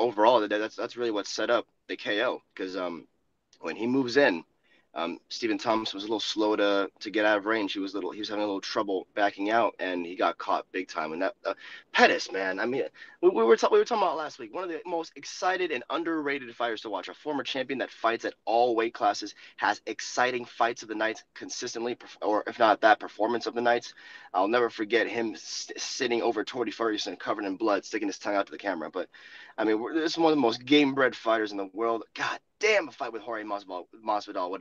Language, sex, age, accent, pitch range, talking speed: English, male, 20-39, American, 105-165 Hz, 245 wpm